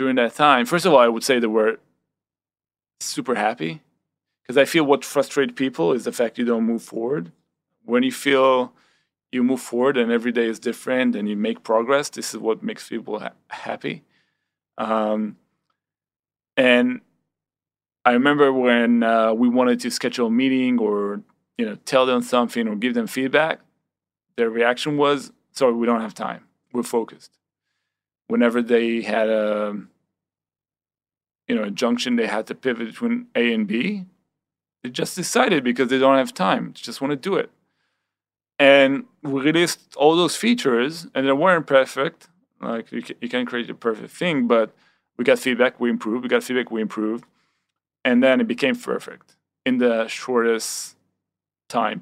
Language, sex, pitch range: Hebrew, male, 115-145 Hz